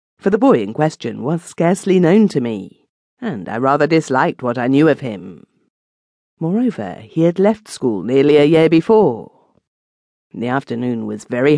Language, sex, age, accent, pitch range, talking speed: English, female, 40-59, British, 125-160 Hz, 165 wpm